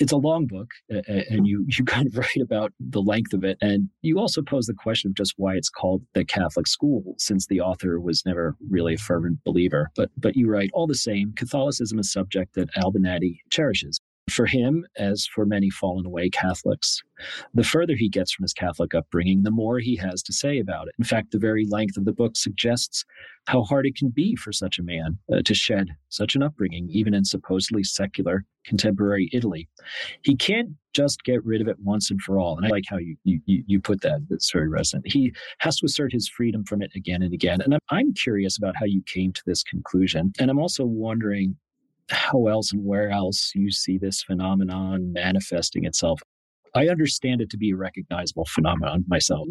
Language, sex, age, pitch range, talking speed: English, male, 40-59, 95-125 Hz, 210 wpm